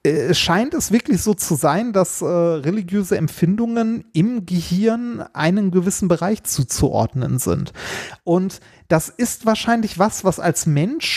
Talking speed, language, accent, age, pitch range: 140 wpm, German, German, 30-49, 160-215 Hz